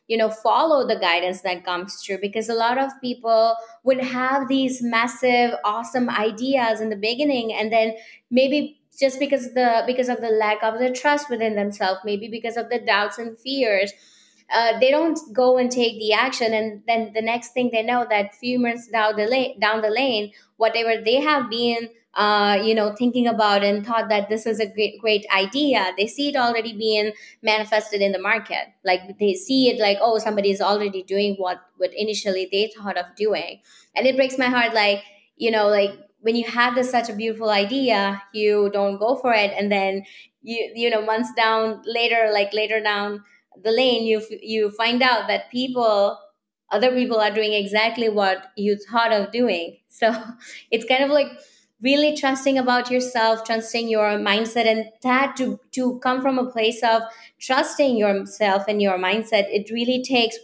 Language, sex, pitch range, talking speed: English, female, 205-245 Hz, 190 wpm